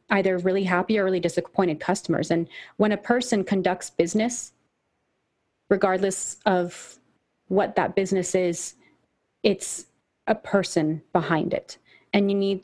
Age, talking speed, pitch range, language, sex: 30-49, 130 wpm, 170-200 Hz, English, female